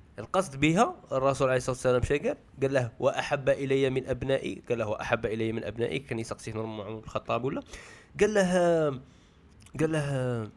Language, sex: Arabic, male